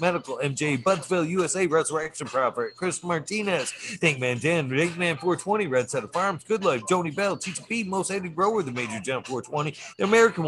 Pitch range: 160-205 Hz